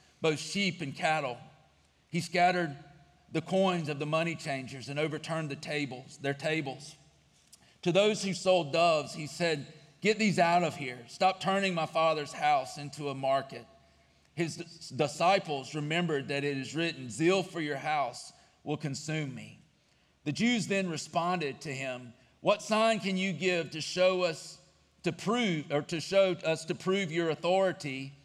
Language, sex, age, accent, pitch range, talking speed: English, male, 40-59, American, 140-175 Hz, 160 wpm